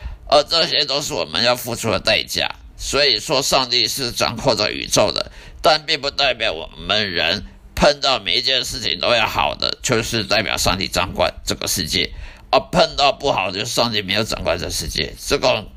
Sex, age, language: male, 50-69, Chinese